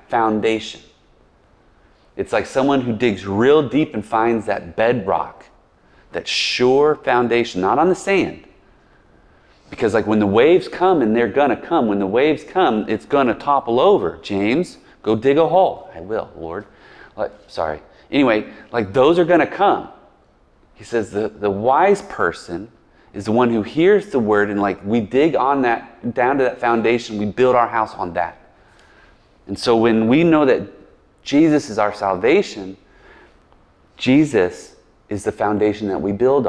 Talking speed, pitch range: 165 wpm, 100-130 Hz